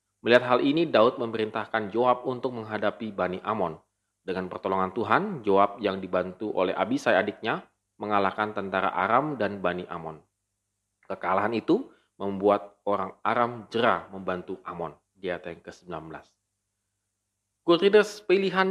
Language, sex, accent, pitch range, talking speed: Indonesian, male, native, 100-130 Hz, 120 wpm